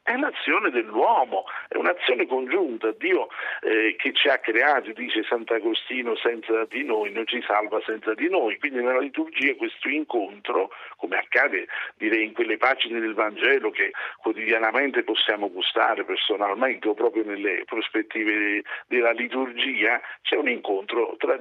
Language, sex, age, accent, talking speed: Italian, male, 50-69, native, 145 wpm